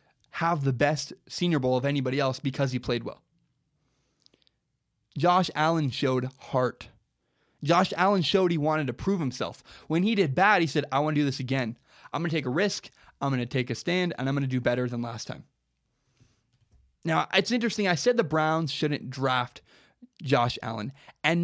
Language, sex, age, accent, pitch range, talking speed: English, male, 20-39, American, 130-180 Hz, 195 wpm